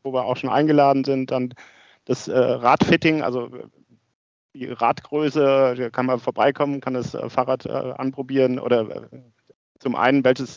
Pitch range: 125-145 Hz